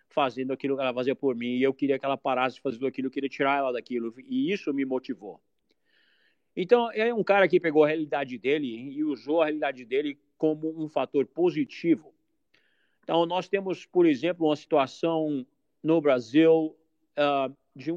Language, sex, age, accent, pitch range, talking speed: Portuguese, male, 50-69, Brazilian, 130-165 Hz, 180 wpm